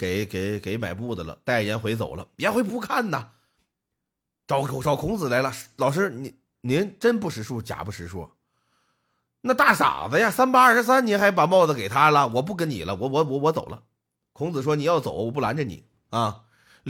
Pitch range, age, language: 135-215 Hz, 30-49, Chinese